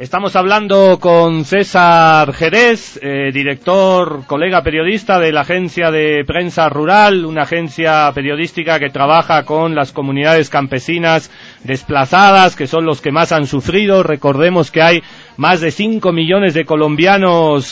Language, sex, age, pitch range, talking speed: Spanish, male, 40-59, 155-190 Hz, 140 wpm